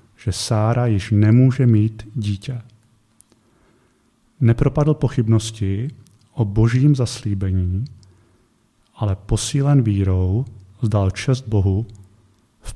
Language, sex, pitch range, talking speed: Czech, male, 105-120 Hz, 85 wpm